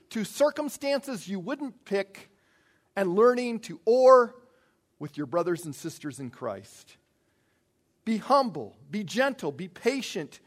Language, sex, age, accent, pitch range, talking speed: English, male, 50-69, American, 165-230 Hz, 125 wpm